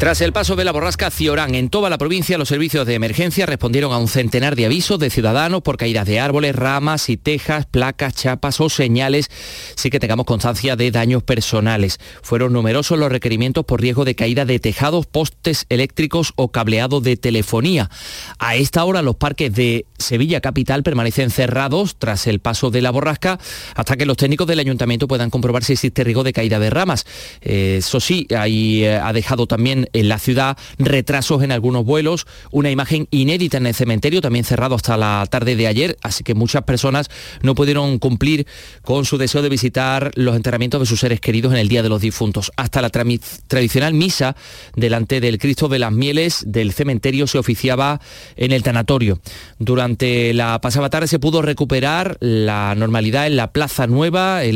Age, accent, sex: 30-49, Spanish, male